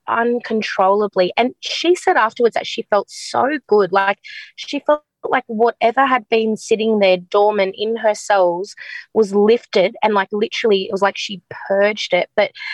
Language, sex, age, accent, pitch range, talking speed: English, female, 20-39, Australian, 195-230 Hz, 165 wpm